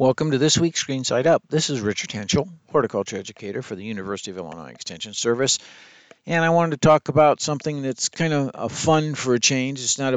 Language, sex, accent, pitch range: English, male, American, 110-135 Hz